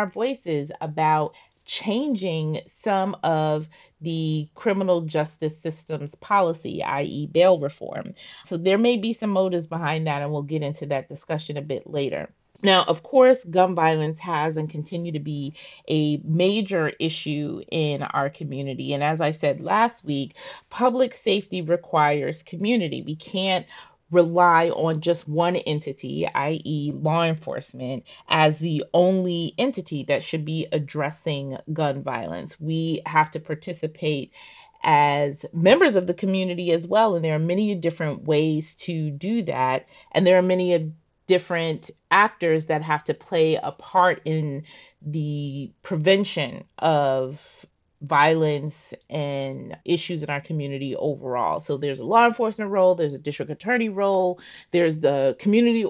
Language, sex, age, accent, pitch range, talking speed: English, female, 30-49, American, 150-180 Hz, 145 wpm